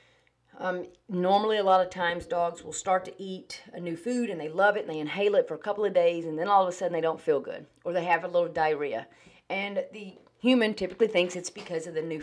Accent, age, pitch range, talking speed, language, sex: American, 40-59, 160-205 Hz, 260 wpm, English, female